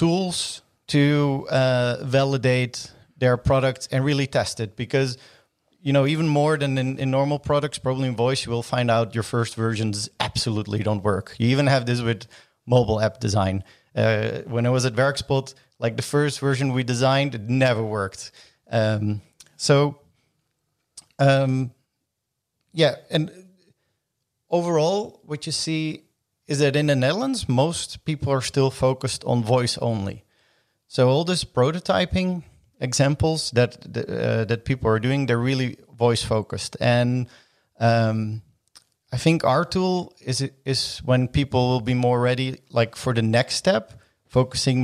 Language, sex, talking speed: Dutch, male, 155 wpm